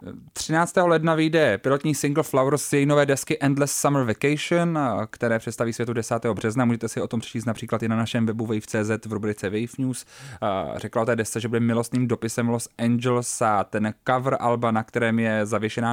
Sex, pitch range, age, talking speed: male, 110-125 Hz, 20-39, 185 wpm